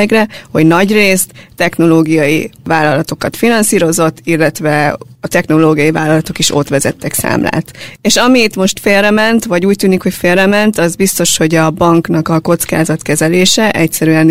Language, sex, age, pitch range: Hungarian, female, 20-39, 160-185 Hz